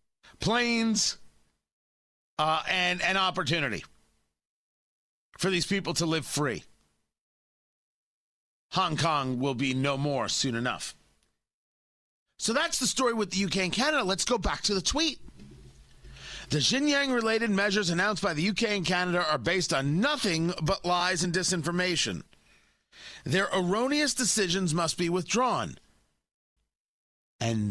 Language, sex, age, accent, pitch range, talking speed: English, male, 40-59, American, 140-220 Hz, 130 wpm